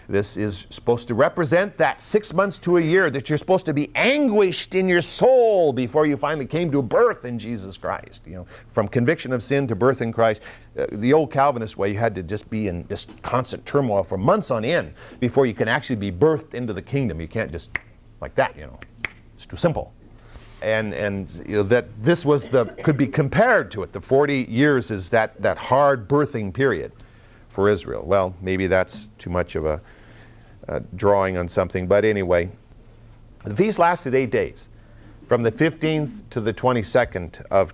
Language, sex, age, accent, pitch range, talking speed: English, male, 50-69, American, 105-140 Hz, 200 wpm